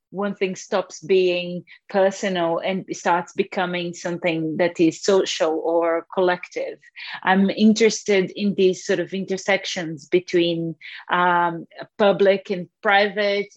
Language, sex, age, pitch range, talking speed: English, female, 30-49, 175-205 Hz, 115 wpm